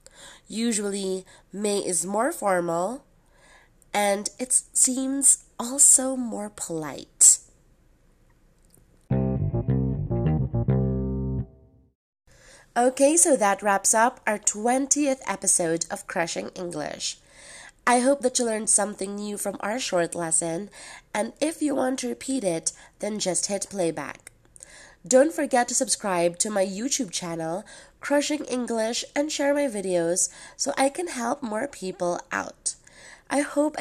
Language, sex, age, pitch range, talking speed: English, female, 20-39, 180-245 Hz, 120 wpm